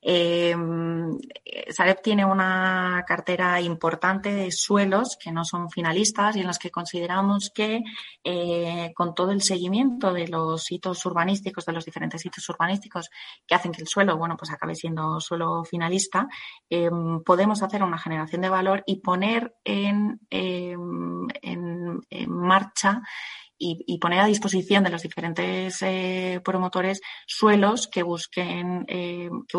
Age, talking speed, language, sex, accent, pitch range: 30-49, 140 wpm, Spanish, female, Spanish, 170-200 Hz